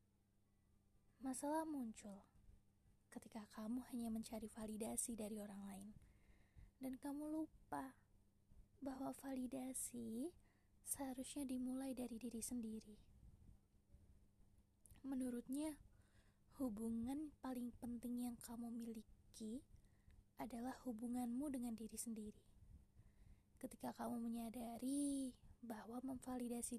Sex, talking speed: female, 85 wpm